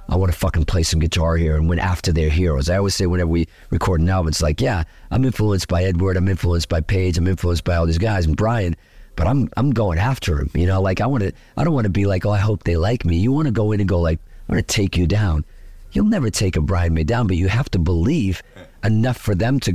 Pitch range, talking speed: 85-120 Hz, 285 wpm